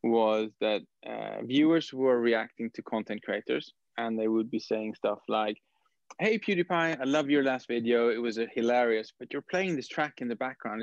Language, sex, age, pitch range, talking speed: English, male, 20-39, 115-140 Hz, 195 wpm